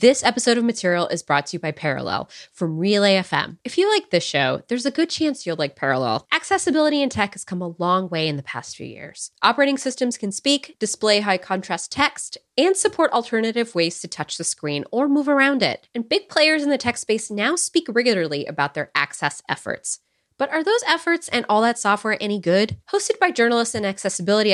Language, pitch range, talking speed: English, 175-270 Hz, 210 wpm